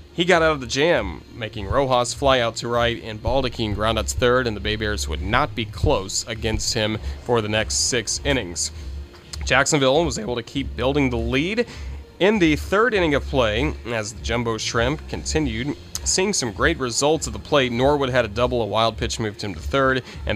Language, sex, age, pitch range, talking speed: English, male, 30-49, 105-140 Hz, 205 wpm